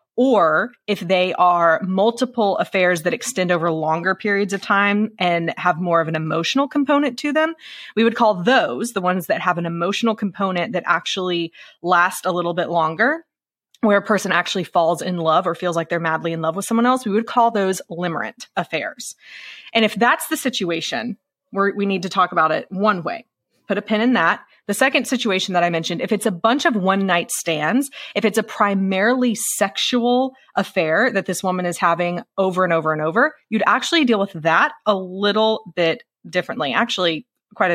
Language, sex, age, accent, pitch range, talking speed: English, female, 20-39, American, 175-230 Hz, 195 wpm